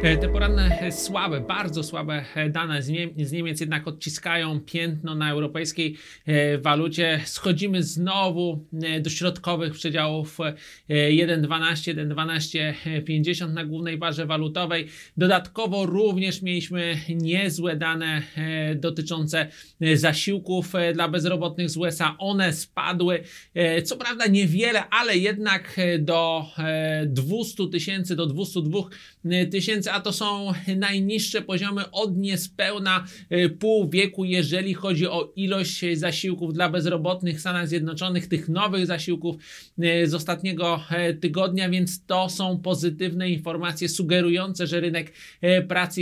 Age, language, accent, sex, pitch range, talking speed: 30-49, Polish, native, male, 165-185 Hz, 110 wpm